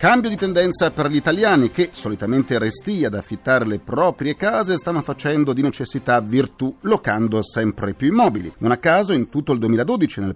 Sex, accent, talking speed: male, native, 180 wpm